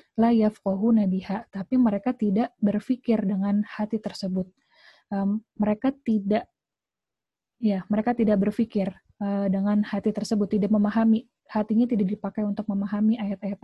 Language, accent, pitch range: Indonesian, native, 195-225 Hz